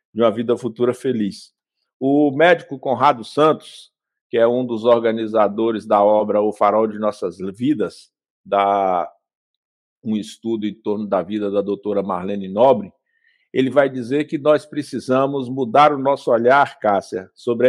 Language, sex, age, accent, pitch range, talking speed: Portuguese, male, 50-69, Brazilian, 115-155 Hz, 150 wpm